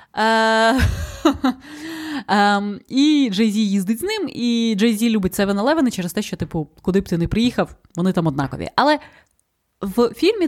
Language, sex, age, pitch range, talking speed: Ukrainian, female, 20-39, 175-230 Hz, 150 wpm